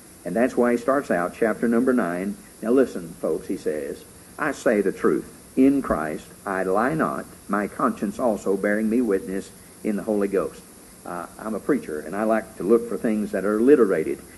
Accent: American